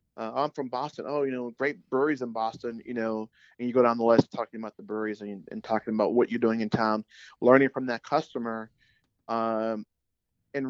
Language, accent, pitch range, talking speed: English, American, 110-130 Hz, 215 wpm